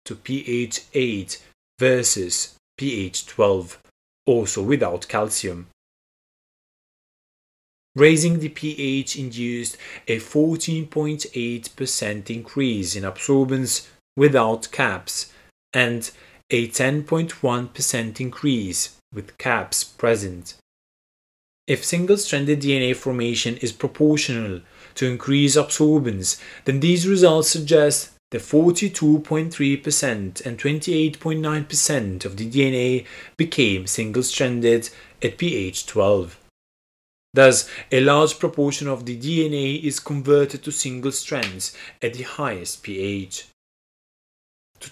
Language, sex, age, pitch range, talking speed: English, male, 30-49, 115-150 Hz, 90 wpm